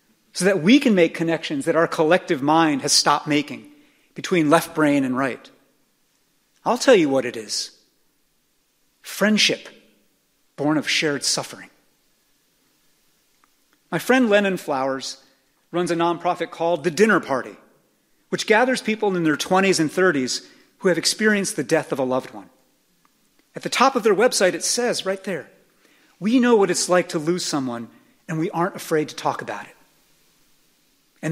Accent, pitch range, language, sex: American, 155-210 Hz, English, male